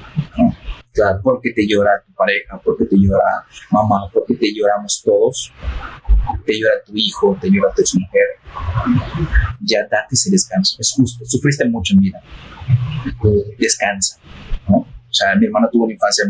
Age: 30-49